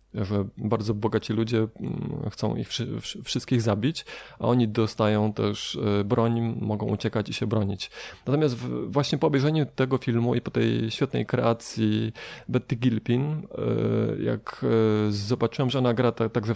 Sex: male